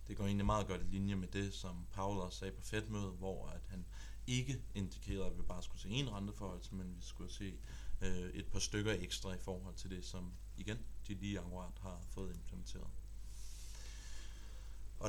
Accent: native